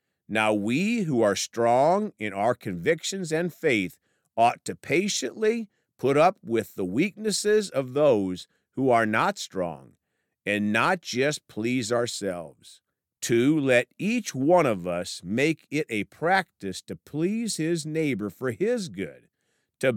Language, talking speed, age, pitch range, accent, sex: English, 140 wpm, 50-69, 105-165 Hz, American, male